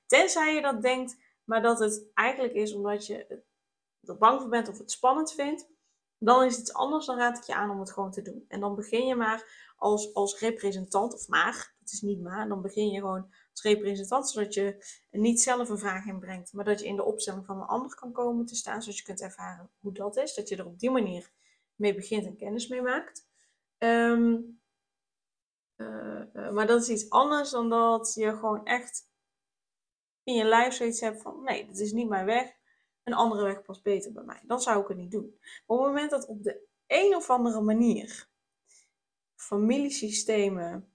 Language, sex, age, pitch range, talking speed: Dutch, female, 20-39, 205-245 Hz, 210 wpm